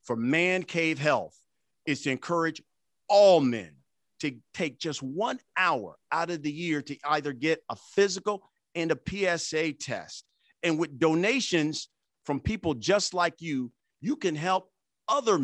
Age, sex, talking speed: 50-69, male, 150 wpm